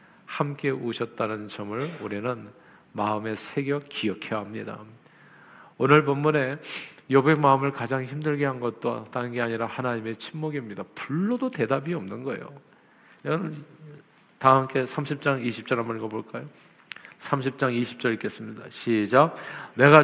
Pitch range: 115-145 Hz